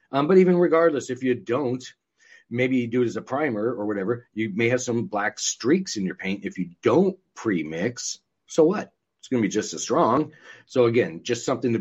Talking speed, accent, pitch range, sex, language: 220 wpm, American, 105-130 Hz, male, English